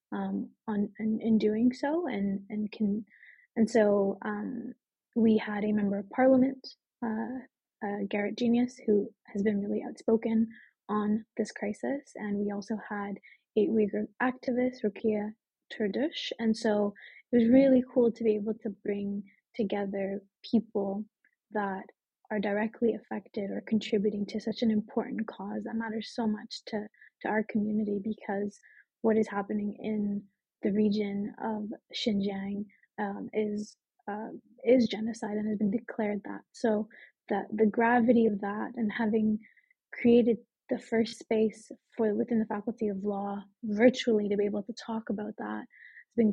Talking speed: 155 wpm